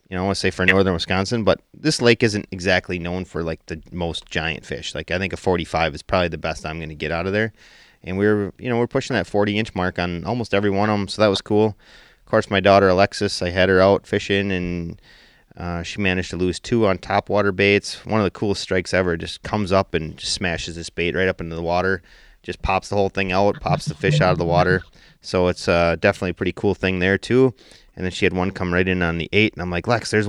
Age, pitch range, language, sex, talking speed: 30-49, 90-105 Hz, English, male, 275 wpm